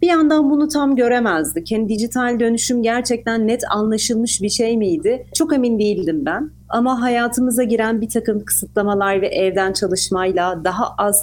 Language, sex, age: Turkish, female, 40-59